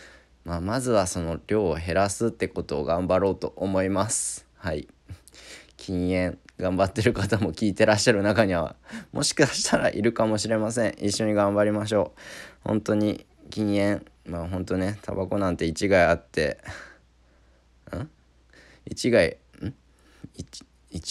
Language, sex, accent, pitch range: Japanese, male, native, 85-100 Hz